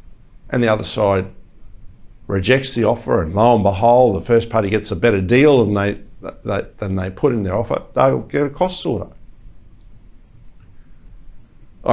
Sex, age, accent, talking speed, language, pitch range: male, 50-69, Australian, 160 wpm, English, 100-125 Hz